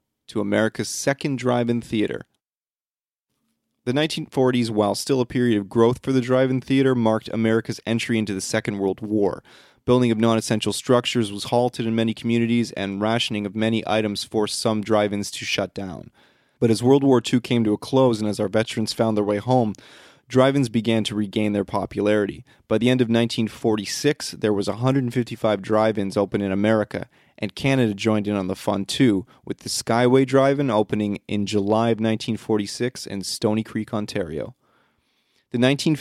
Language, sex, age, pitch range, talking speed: English, male, 30-49, 105-125 Hz, 170 wpm